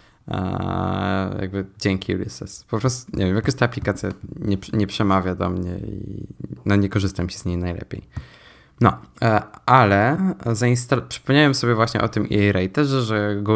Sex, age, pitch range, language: male, 20-39, 100-125 Hz, Polish